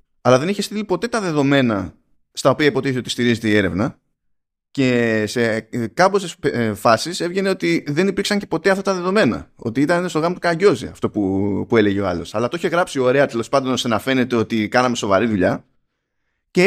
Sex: male